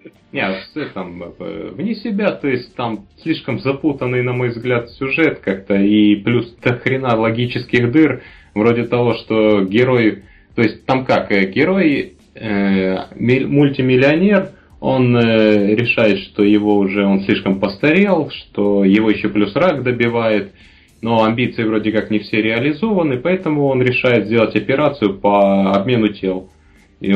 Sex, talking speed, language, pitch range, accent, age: male, 135 wpm, Russian, 100-125 Hz, native, 20-39